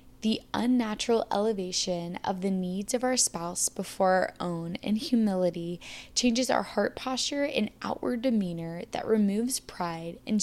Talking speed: 145 wpm